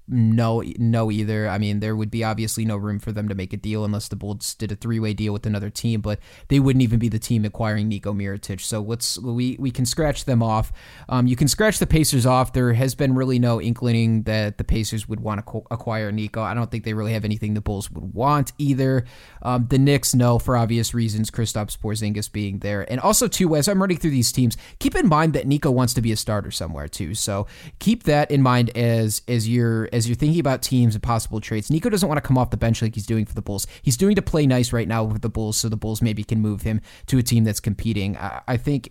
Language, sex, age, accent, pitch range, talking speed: English, male, 20-39, American, 110-130 Hz, 255 wpm